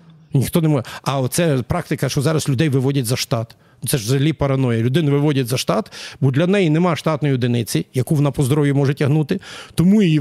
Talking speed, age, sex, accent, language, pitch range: 195 wpm, 50-69, male, native, Ukrainian, 135-190 Hz